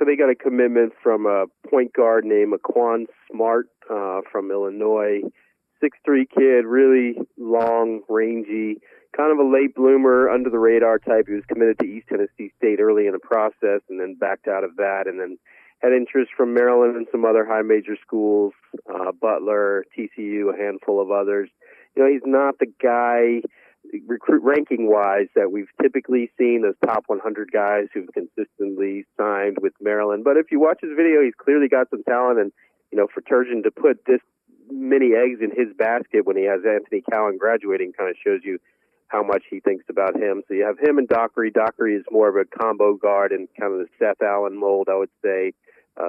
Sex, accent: male, American